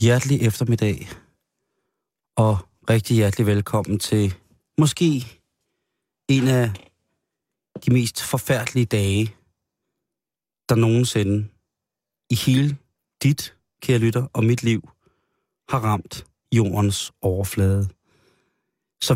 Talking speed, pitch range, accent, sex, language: 90 wpm, 100-120 Hz, native, male, Danish